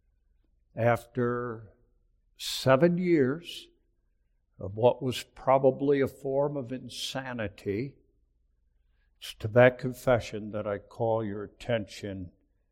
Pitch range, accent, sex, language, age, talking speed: 100-160 Hz, American, male, English, 60-79, 95 wpm